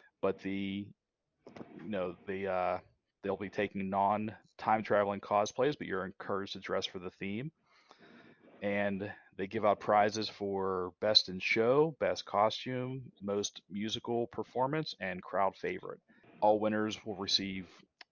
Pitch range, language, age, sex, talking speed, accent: 95-110 Hz, English, 30-49, male, 135 wpm, American